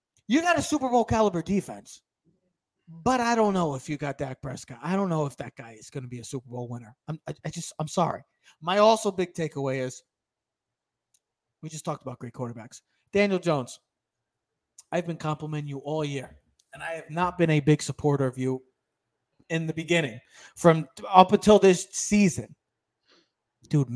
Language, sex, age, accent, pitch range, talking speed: English, male, 30-49, American, 145-220 Hz, 175 wpm